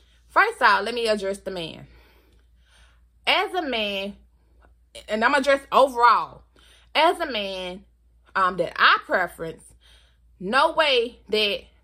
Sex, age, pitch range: female, 20-39, 175-220 Hz